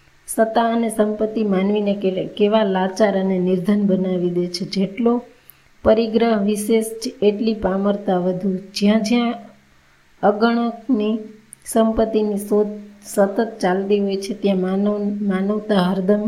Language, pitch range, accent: Gujarati, 195-220 Hz, native